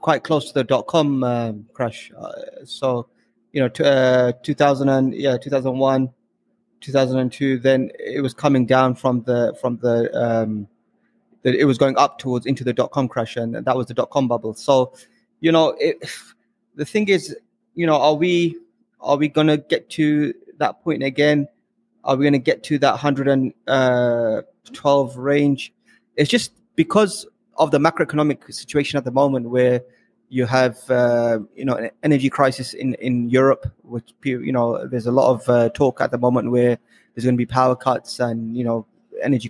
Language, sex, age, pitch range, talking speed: English, male, 20-39, 120-145 Hz, 185 wpm